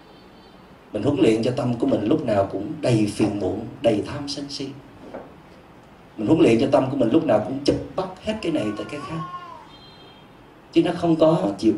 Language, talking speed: Vietnamese, 205 wpm